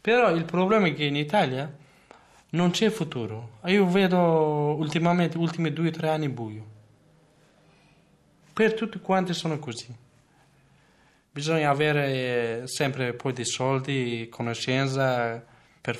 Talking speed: 125 wpm